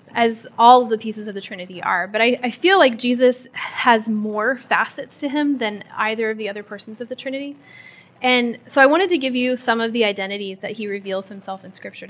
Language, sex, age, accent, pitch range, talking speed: English, female, 10-29, American, 205-250 Hz, 225 wpm